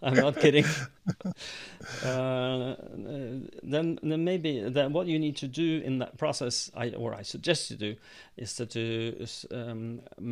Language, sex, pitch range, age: English, male, 115-135 Hz, 30-49